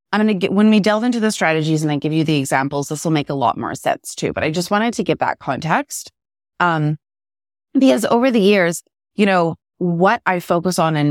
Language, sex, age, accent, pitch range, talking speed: English, female, 20-39, American, 145-210 Hz, 240 wpm